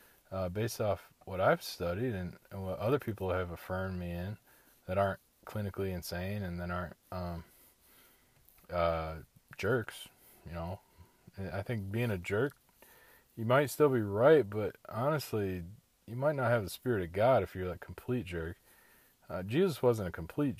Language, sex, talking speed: English, male, 165 wpm